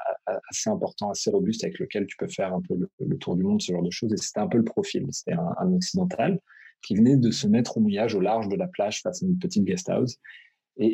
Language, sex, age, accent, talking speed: French, male, 30-49, French, 270 wpm